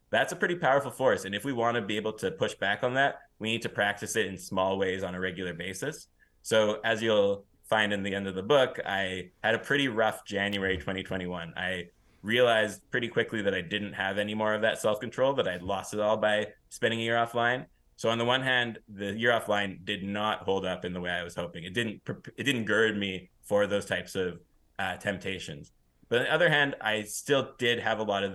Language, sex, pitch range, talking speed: English, male, 95-110 Hz, 235 wpm